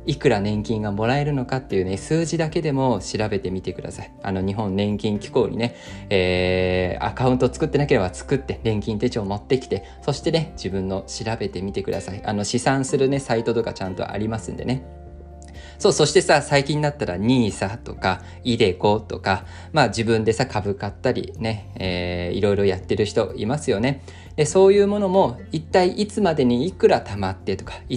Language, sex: Japanese, male